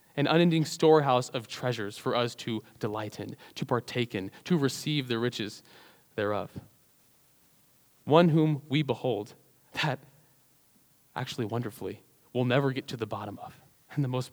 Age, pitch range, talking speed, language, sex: 20-39, 120-155 Hz, 145 wpm, English, male